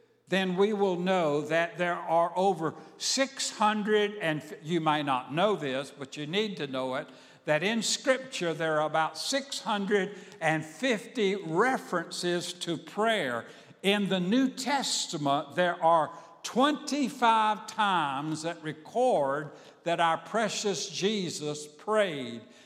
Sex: male